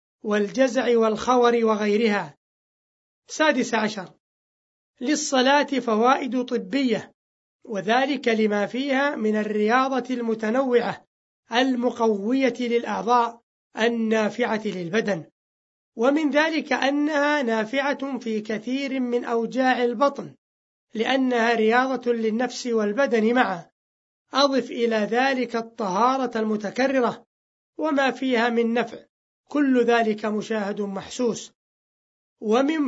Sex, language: male, Arabic